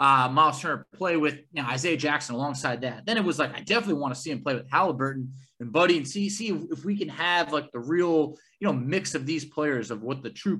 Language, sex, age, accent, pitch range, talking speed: English, male, 20-39, American, 140-205 Hz, 265 wpm